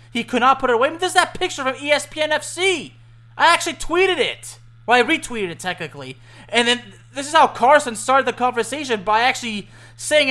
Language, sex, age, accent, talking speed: English, male, 30-49, American, 205 wpm